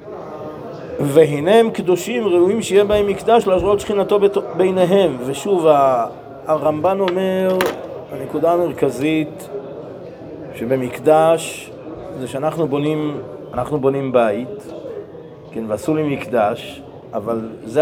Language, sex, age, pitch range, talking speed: Hebrew, male, 40-59, 135-185 Hz, 95 wpm